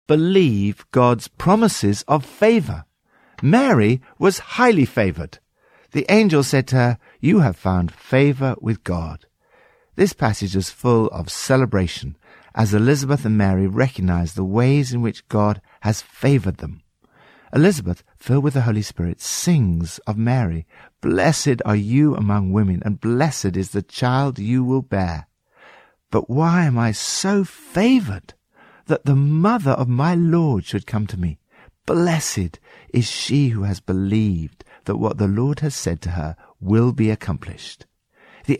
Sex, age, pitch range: male, 60-79, 95-145 Hz